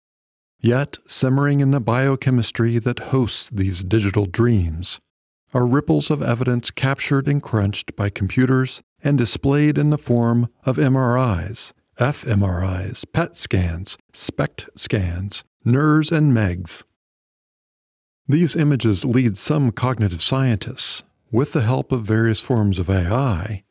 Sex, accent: male, American